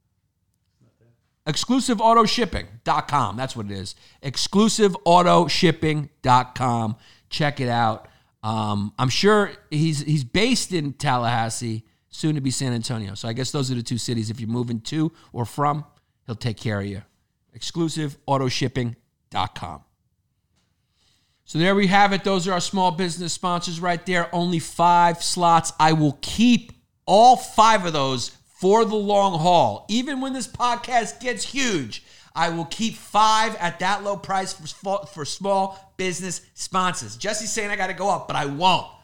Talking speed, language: 150 wpm, English